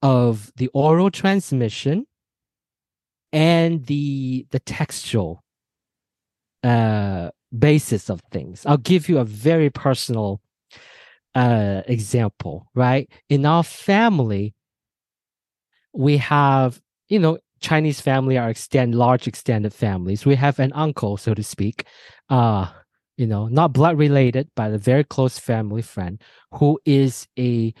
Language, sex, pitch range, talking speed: English, male, 115-155 Hz, 125 wpm